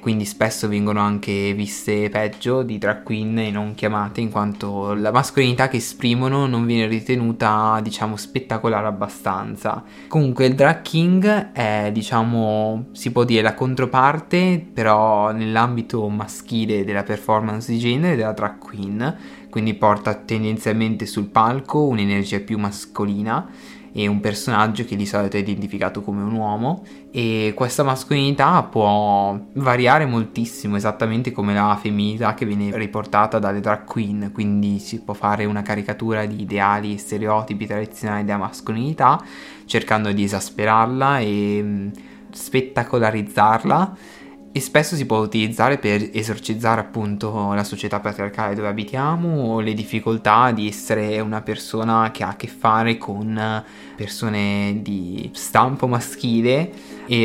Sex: male